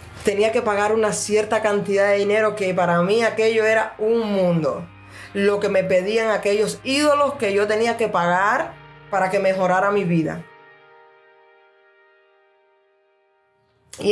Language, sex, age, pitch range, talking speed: Spanish, female, 20-39, 175-220 Hz, 135 wpm